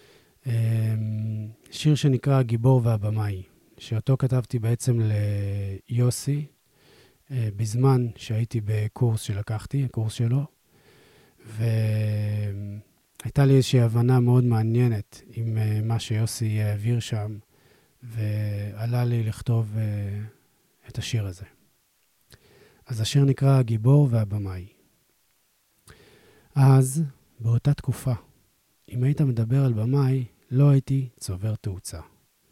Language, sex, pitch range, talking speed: Hebrew, male, 110-130 Hz, 90 wpm